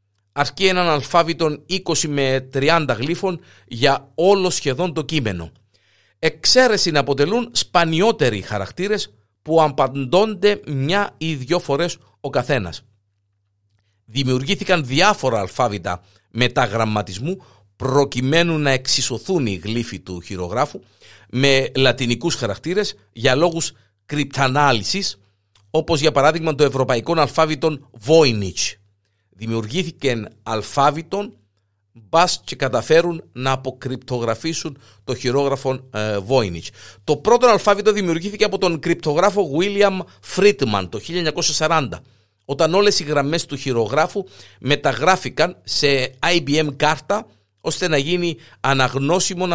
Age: 50-69